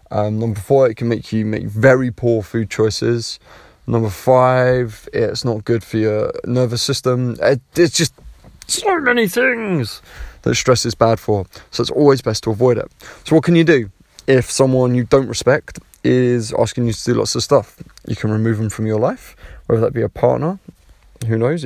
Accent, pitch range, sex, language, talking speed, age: British, 110-135 Hz, male, English, 195 wpm, 20-39